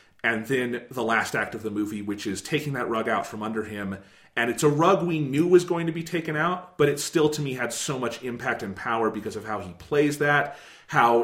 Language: English